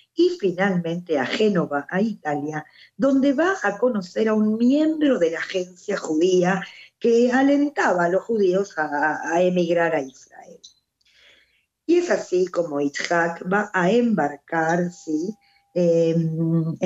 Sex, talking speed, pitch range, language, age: female, 130 wpm, 170-240 Hz, Spanish, 50-69